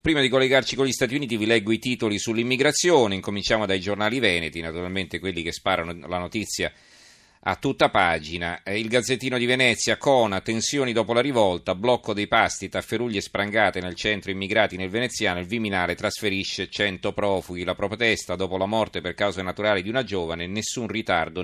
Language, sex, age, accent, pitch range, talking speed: Italian, male, 40-59, native, 95-115 Hz, 175 wpm